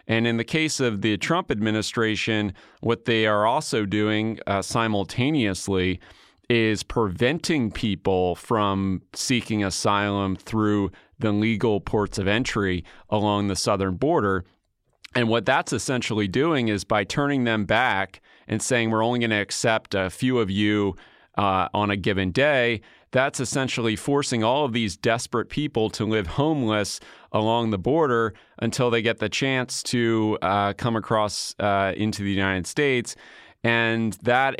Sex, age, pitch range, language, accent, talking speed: male, 30-49, 100-115 Hz, English, American, 150 wpm